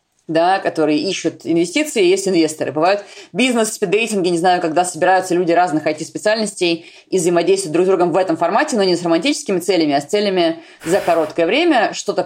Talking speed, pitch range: 180 wpm, 170-235 Hz